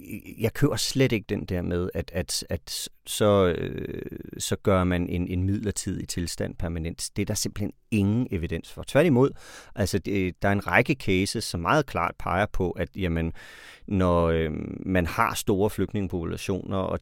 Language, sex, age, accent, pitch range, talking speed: Danish, male, 40-59, native, 85-105 Hz, 175 wpm